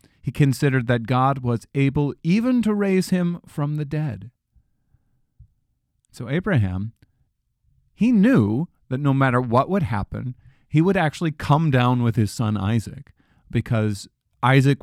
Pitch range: 110-140 Hz